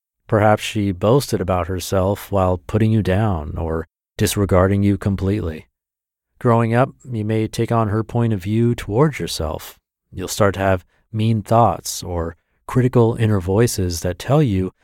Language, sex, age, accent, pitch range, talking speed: English, male, 40-59, American, 95-115 Hz, 155 wpm